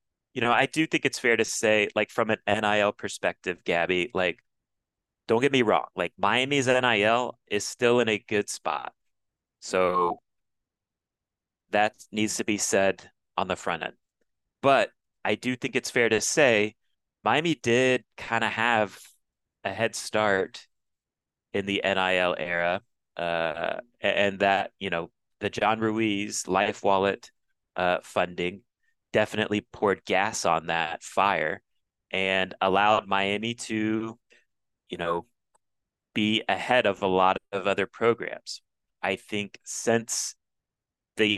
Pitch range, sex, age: 95-115 Hz, male, 30-49